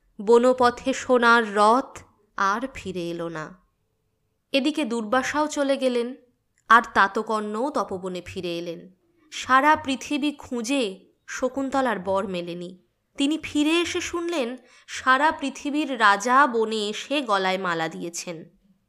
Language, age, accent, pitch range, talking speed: Bengali, 20-39, native, 200-280 Hz, 110 wpm